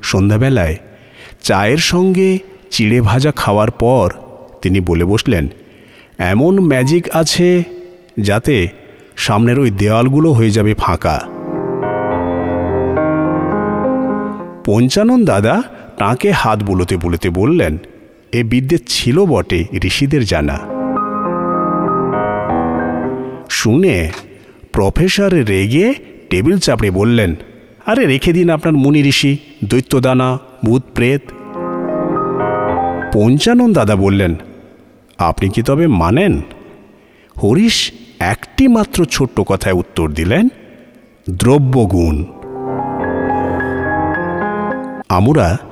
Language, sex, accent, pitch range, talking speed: Bengali, male, native, 95-145 Hz, 80 wpm